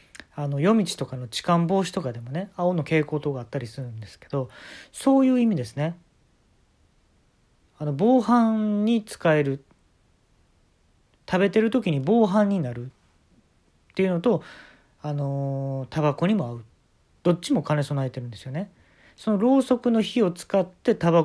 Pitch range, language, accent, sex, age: 120-195 Hz, Japanese, native, male, 40-59